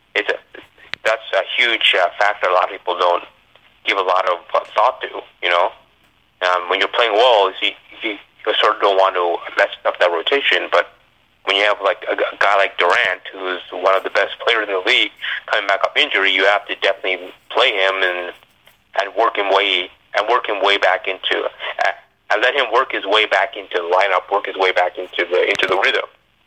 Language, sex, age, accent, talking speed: English, male, 30-49, American, 220 wpm